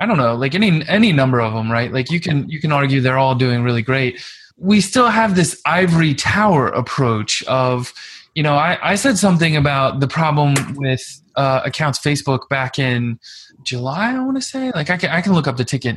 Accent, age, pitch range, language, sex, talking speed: American, 20-39, 130-175 Hz, English, male, 220 wpm